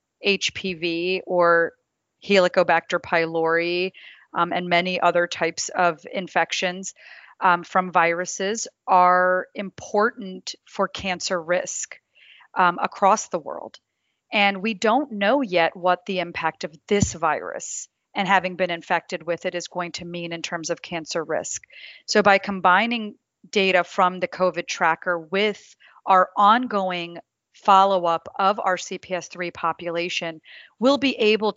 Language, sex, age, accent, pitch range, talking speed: English, female, 30-49, American, 175-200 Hz, 130 wpm